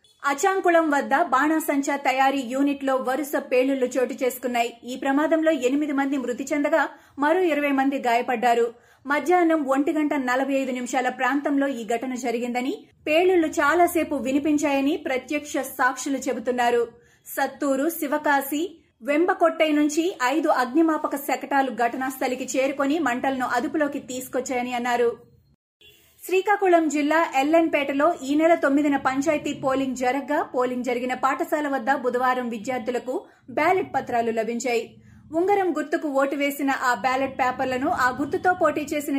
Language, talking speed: Telugu, 120 wpm